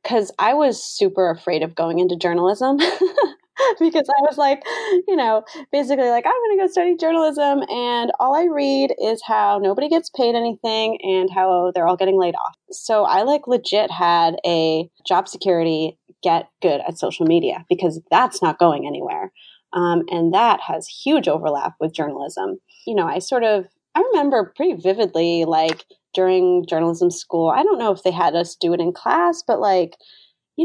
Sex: female